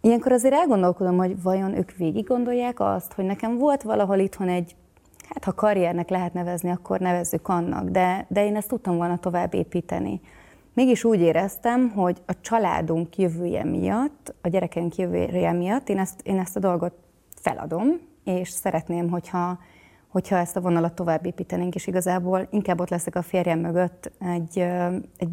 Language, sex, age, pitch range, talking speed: Hungarian, female, 30-49, 175-195 Hz, 160 wpm